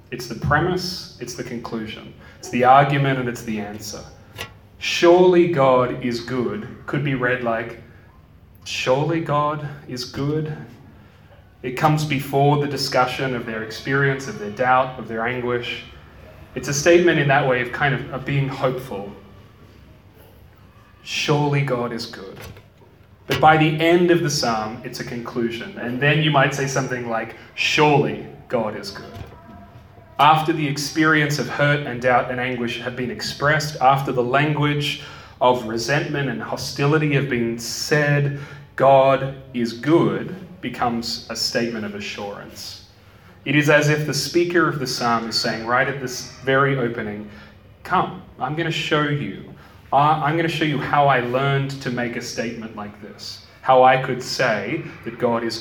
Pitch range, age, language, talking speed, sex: 115-145 Hz, 30-49, English, 160 wpm, male